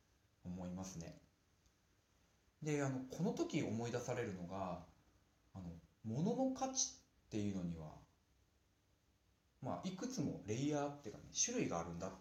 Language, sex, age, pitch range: Japanese, male, 40-59, 95-140 Hz